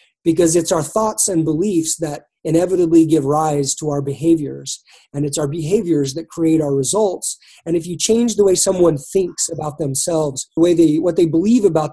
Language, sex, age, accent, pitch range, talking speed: English, male, 30-49, American, 150-185 Hz, 190 wpm